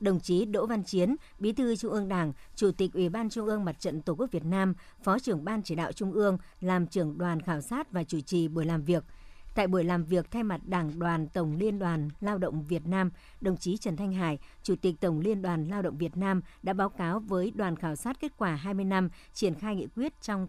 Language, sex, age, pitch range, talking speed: Vietnamese, male, 60-79, 170-205 Hz, 250 wpm